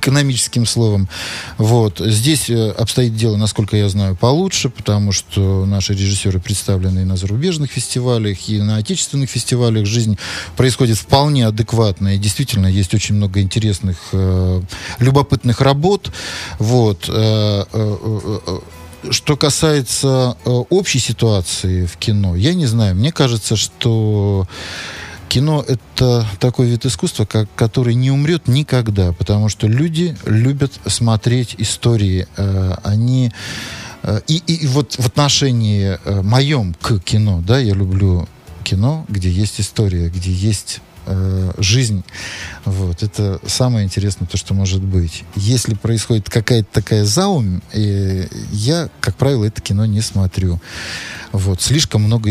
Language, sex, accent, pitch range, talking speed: Russian, male, native, 95-125 Hz, 120 wpm